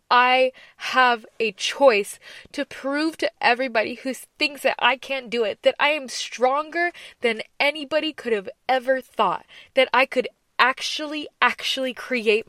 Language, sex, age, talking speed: English, female, 20-39, 150 wpm